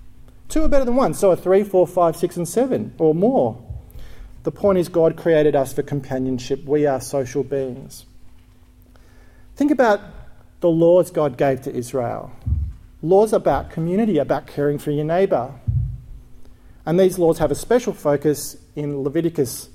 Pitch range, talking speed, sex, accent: 140-180 Hz, 160 wpm, male, Australian